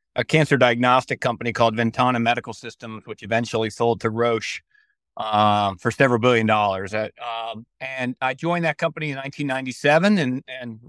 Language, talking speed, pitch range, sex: English, 160 wpm, 115-140 Hz, male